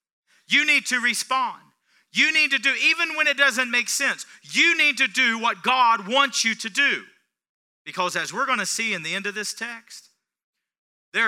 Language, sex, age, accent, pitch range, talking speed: English, male, 40-59, American, 160-235 Hz, 195 wpm